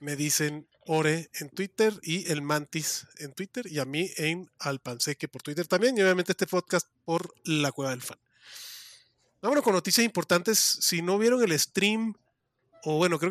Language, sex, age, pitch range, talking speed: Spanish, male, 30-49, 145-180 Hz, 180 wpm